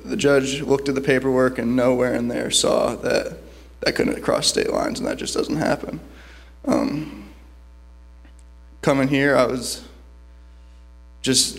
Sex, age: male, 20-39